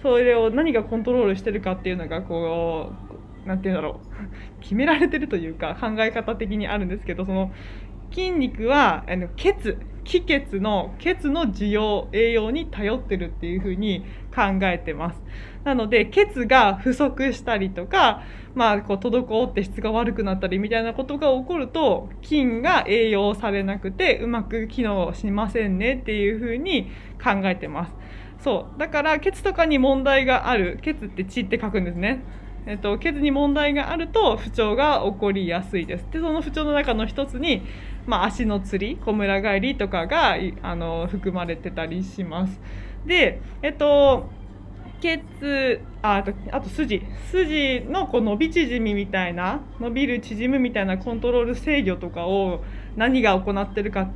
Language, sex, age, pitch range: Japanese, female, 20-39, 195-270 Hz